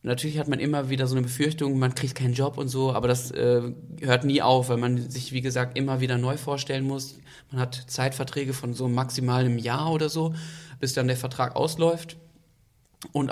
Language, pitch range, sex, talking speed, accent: German, 125-150 Hz, male, 205 wpm, German